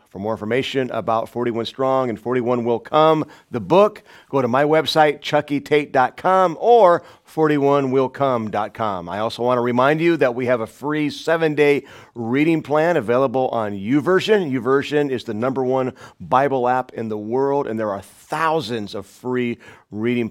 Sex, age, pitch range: male, 40-59, 100-130 Hz